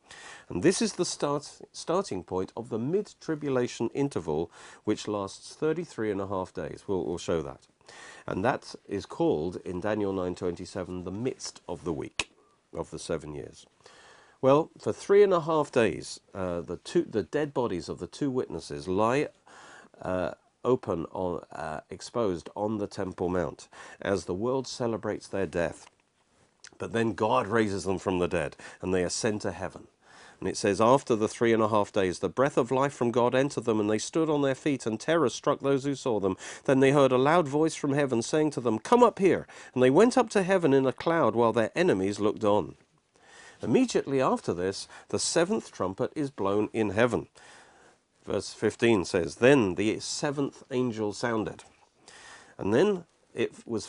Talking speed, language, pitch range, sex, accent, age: 185 wpm, English, 100-145 Hz, male, British, 50-69